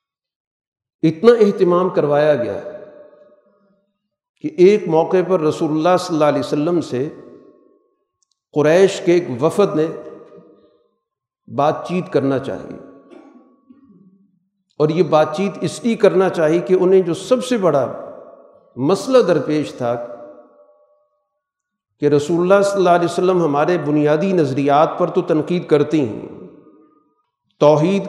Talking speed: 125 wpm